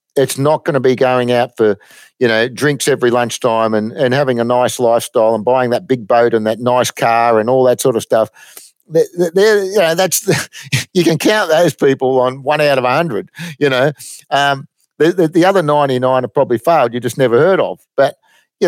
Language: English